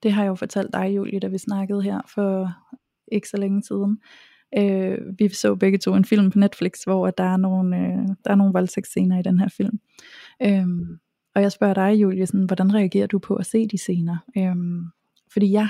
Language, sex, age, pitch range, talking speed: Danish, female, 20-39, 190-210 Hz, 205 wpm